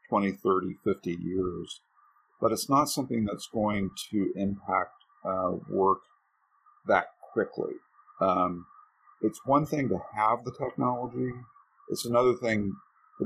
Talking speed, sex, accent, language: 125 wpm, male, American, English